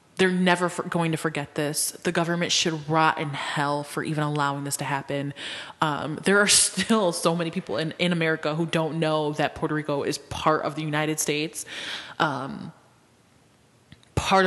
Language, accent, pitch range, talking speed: English, American, 155-185 Hz, 175 wpm